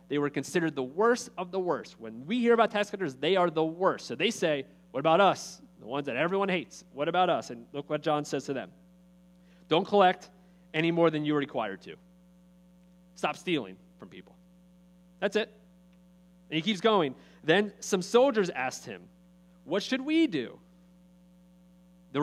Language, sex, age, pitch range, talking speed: English, male, 30-49, 170-205 Hz, 180 wpm